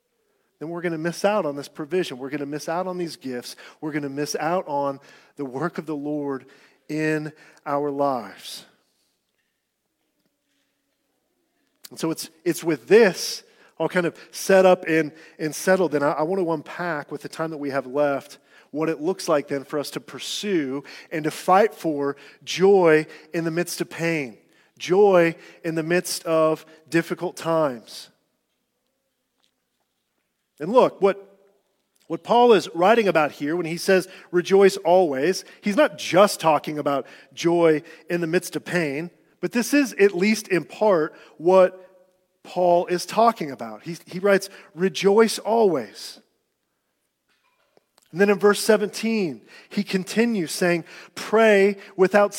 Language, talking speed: English, 155 wpm